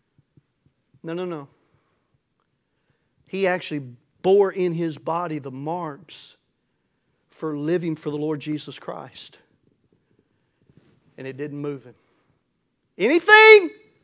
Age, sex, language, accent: 40-59, male, English, American